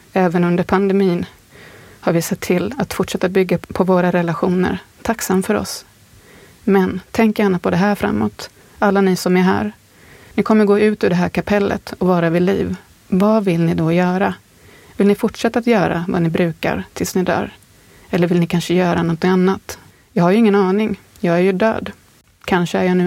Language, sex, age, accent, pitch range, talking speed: Swedish, female, 30-49, native, 170-195 Hz, 200 wpm